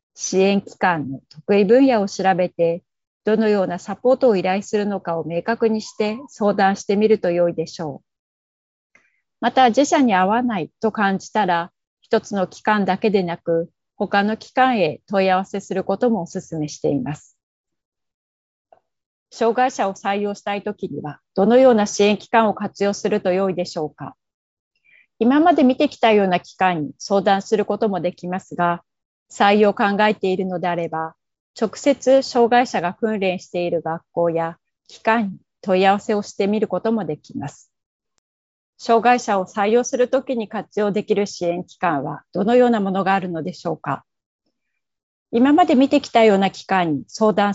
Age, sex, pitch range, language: 30-49, female, 175-220 Hz, Japanese